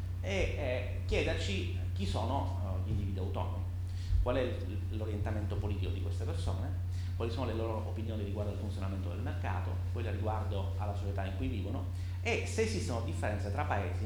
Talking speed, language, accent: 160 wpm, Italian, native